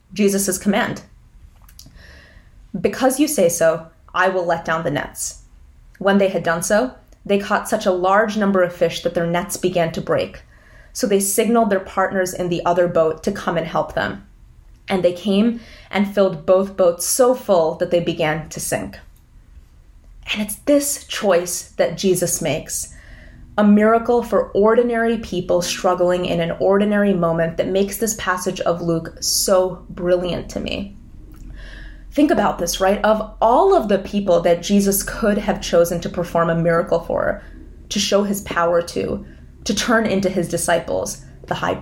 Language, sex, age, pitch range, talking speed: English, female, 20-39, 170-210 Hz, 170 wpm